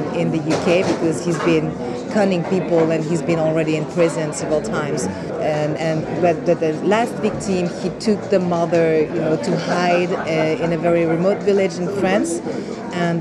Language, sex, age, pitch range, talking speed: English, female, 30-49, 170-195 Hz, 170 wpm